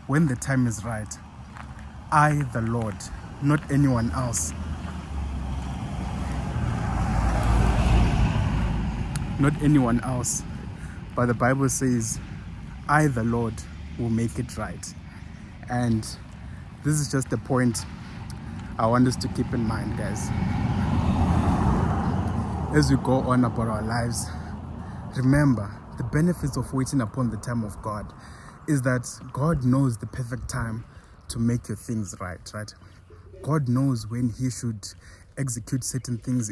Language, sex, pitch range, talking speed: English, male, 95-125 Hz, 125 wpm